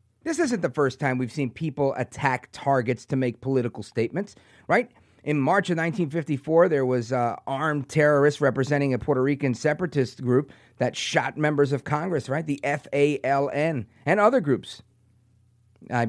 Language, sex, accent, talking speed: English, male, American, 155 wpm